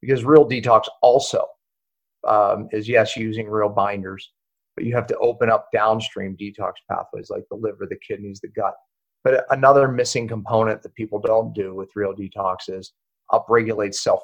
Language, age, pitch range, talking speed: English, 40-59, 105-130 Hz, 170 wpm